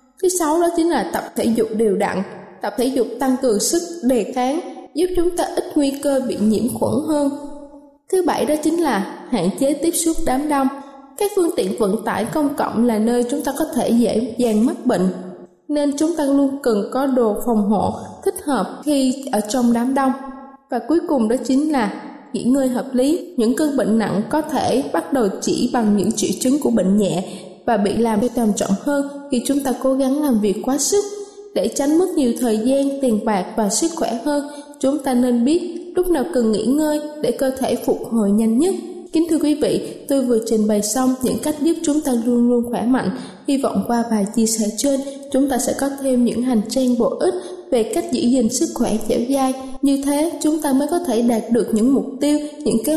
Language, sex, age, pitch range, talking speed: Vietnamese, female, 20-39, 230-295 Hz, 225 wpm